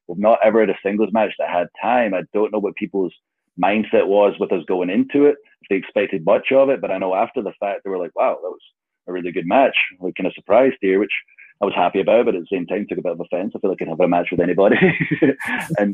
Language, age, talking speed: English, 30-49, 280 wpm